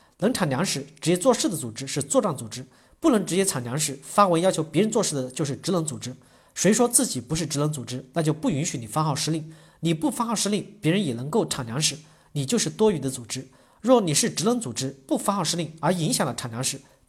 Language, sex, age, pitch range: Chinese, male, 40-59, 135-210 Hz